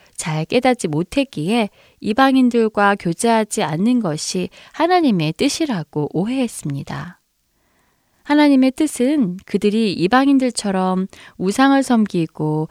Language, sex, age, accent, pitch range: Korean, female, 20-39, native, 165-245 Hz